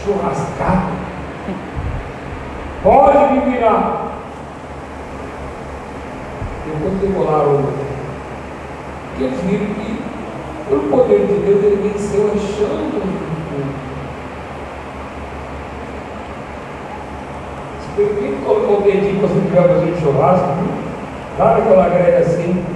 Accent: Brazilian